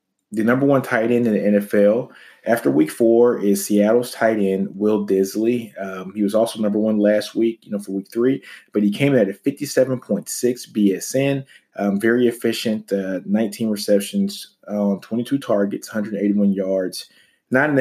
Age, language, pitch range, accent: 30-49, English, 100-115 Hz, American